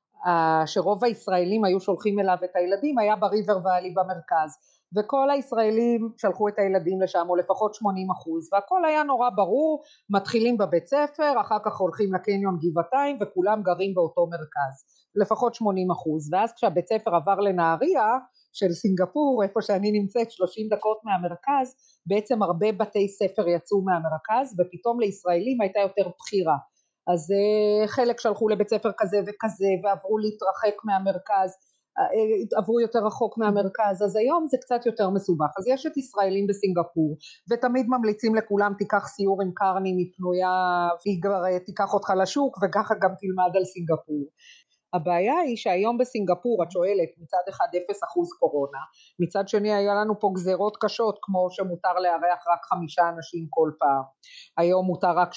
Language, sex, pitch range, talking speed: Hebrew, female, 180-220 Hz, 145 wpm